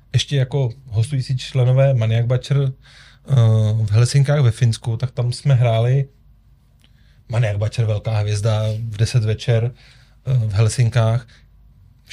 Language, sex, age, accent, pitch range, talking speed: Czech, male, 30-49, native, 115-135 Hz, 130 wpm